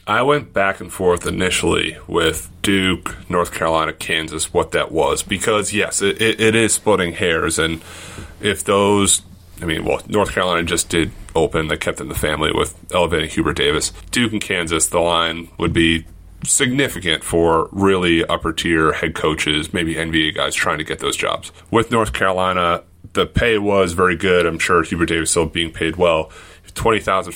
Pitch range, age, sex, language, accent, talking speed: 80-100 Hz, 30-49, male, English, American, 180 wpm